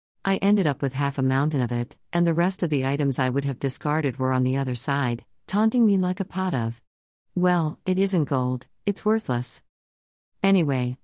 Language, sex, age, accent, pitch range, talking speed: English, female, 50-69, American, 130-170 Hz, 200 wpm